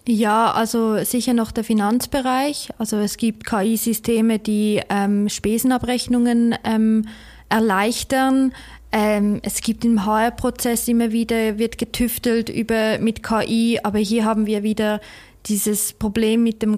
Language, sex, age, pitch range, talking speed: German, female, 20-39, 215-235 Hz, 130 wpm